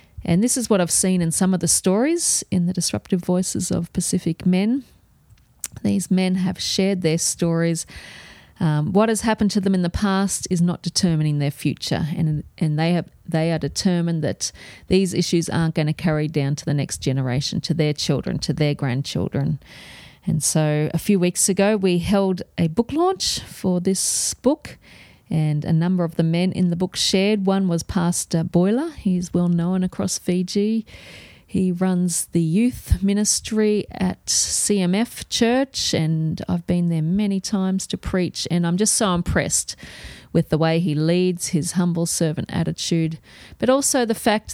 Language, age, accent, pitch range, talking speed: English, 40-59, Australian, 160-195 Hz, 175 wpm